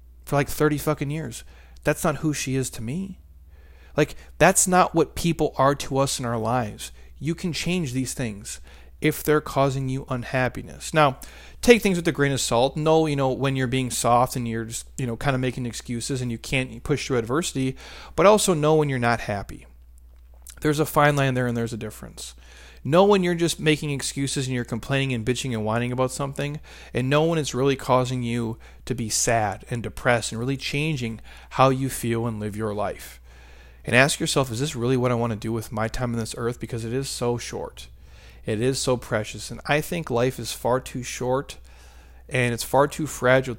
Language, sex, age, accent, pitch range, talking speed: English, male, 40-59, American, 110-140 Hz, 215 wpm